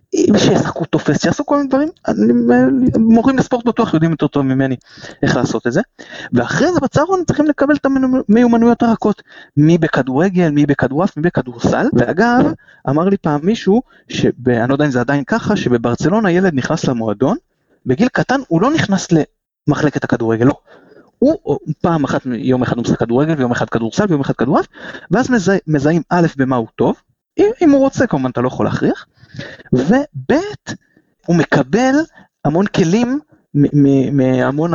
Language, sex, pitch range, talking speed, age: Hebrew, male, 130-205 Hz, 140 wpm, 30-49